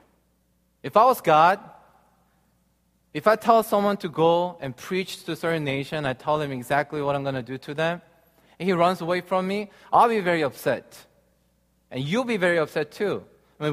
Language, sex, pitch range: Korean, male, 140-190 Hz